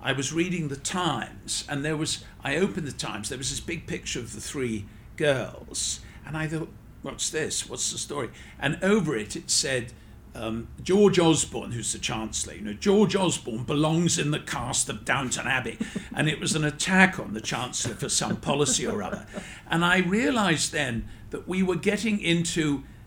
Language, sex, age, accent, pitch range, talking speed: English, male, 50-69, British, 125-170 Hz, 190 wpm